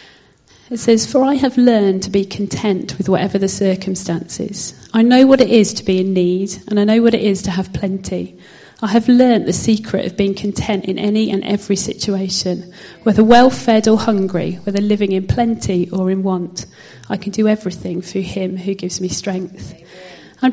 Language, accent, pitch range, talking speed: English, British, 190-220 Hz, 195 wpm